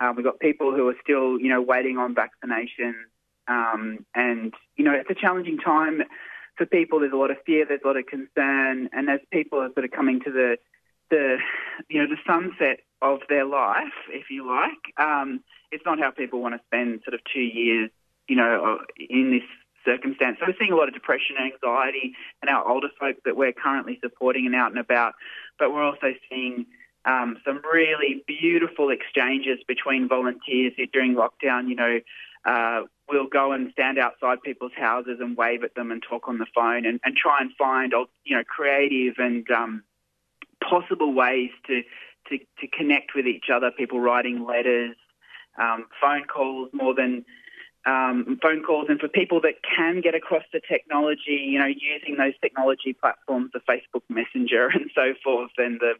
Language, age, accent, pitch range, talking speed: English, 20-39, Australian, 125-145 Hz, 190 wpm